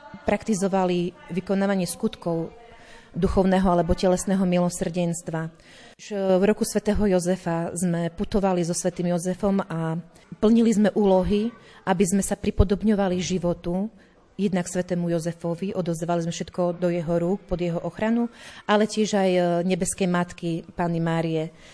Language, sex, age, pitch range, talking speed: Slovak, female, 30-49, 175-205 Hz, 125 wpm